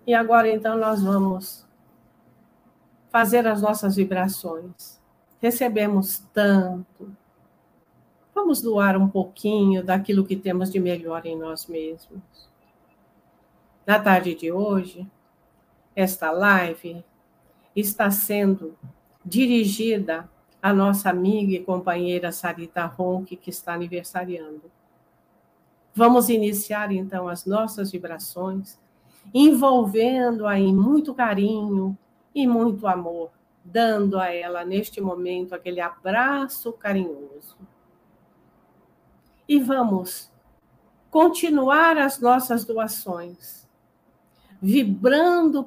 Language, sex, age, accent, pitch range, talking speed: Portuguese, female, 60-79, Brazilian, 180-230 Hz, 95 wpm